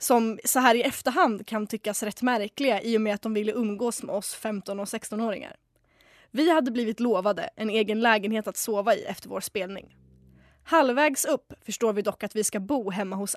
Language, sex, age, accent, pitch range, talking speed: Swedish, female, 20-39, native, 210-255 Hz, 200 wpm